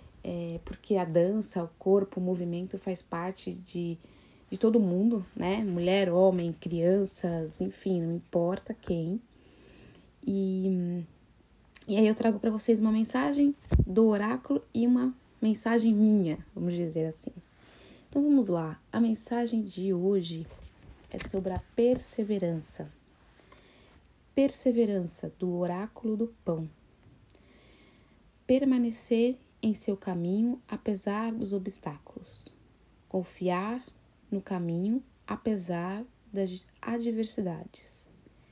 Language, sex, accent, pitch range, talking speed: Portuguese, female, Brazilian, 180-225 Hz, 105 wpm